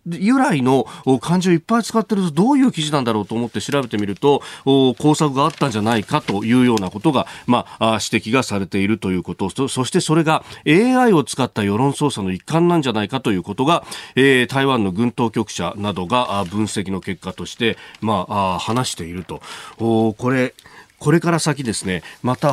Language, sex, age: Japanese, male, 40-59